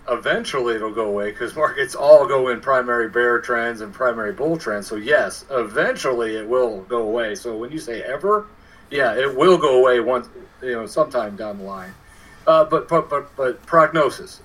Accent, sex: American, male